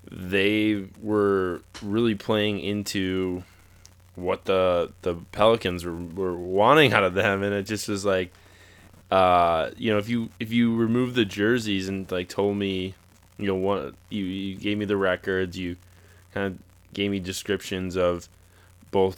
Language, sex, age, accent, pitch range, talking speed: English, male, 20-39, American, 90-100 Hz, 160 wpm